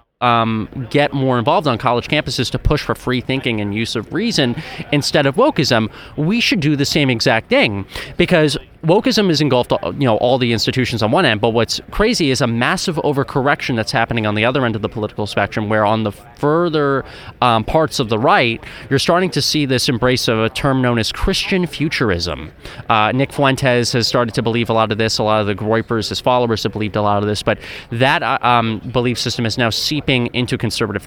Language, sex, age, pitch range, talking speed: English, male, 30-49, 115-150 Hz, 215 wpm